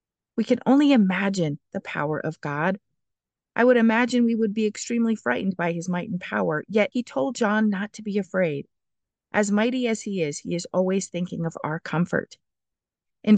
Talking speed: 190 wpm